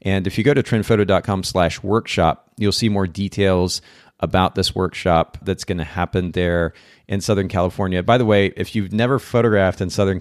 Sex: male